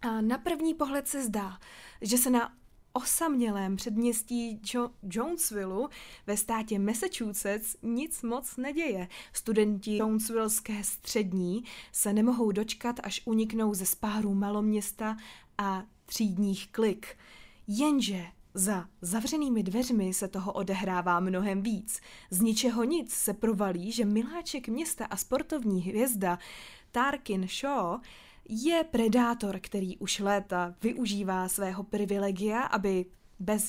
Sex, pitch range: female, 195-235 Hz